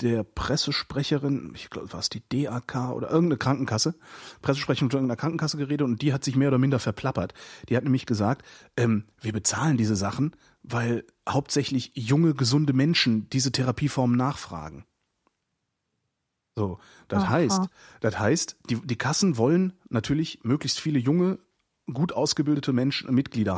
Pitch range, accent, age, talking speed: 115-150 Hz, German, 30-49, 150 wpm